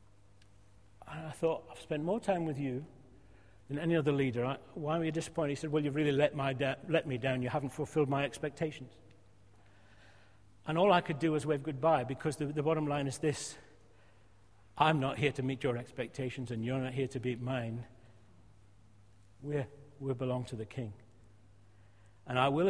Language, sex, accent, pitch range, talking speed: English, male, British, 115-155 Hz, 175 wpm